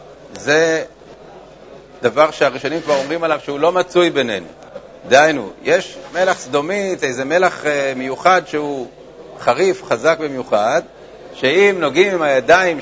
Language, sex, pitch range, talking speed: Hebrew, male, 130-170 Hz, 115 wpm